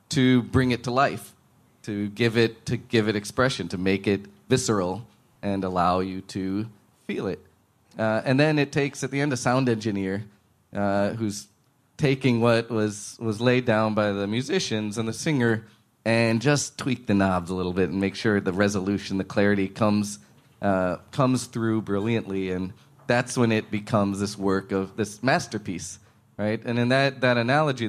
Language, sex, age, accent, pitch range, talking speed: English, male, 30-49, American, 105-130 Hz, 180 wpm